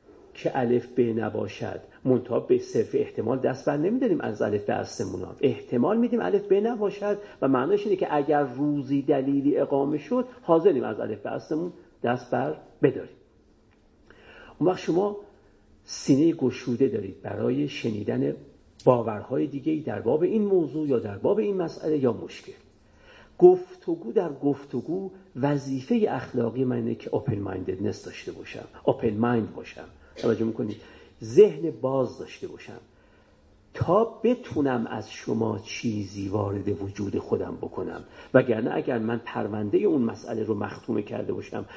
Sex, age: male, 50-69